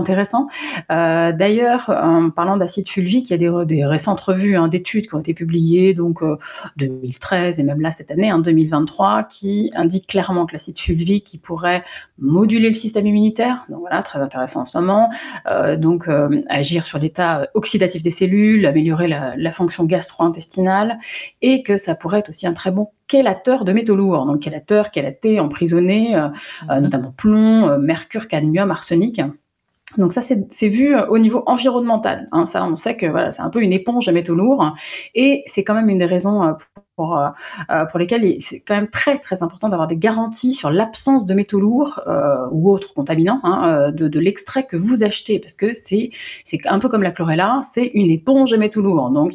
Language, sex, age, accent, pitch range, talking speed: French, female, 30-49, French, 165-220 Hz, 200 wpm